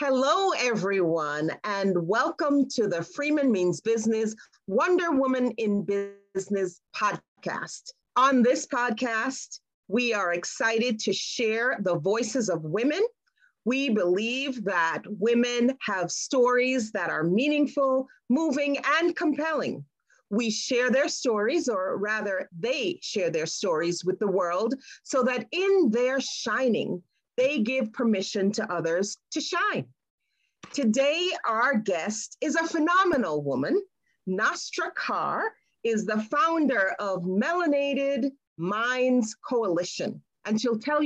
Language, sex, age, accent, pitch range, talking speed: English, female, 40-59, American, 210-285 Hz, 120 wpm